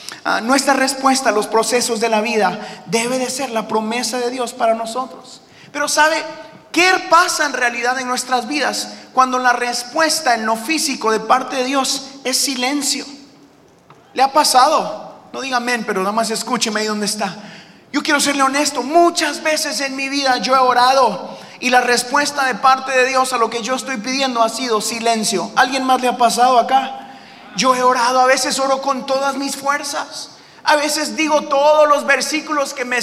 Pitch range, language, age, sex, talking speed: 245-295 Hz, Spanish, 30-49, male, 190 wpm